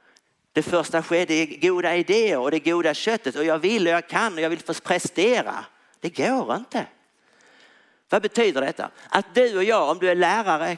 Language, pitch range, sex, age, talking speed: Swedish, 155-195 Hz, male, 50-69, 195 wpm